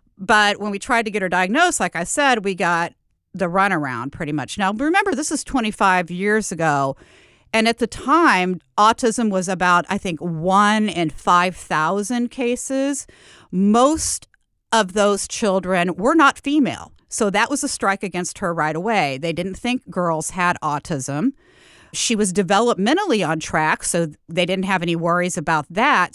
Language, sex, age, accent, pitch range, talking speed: English, female, 40-59, American, 170-225 Hz, 165 wpm